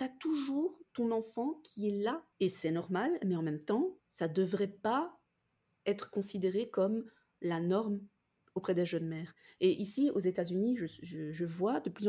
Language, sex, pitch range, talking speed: French, female, 170-220 Hz, 175 wpm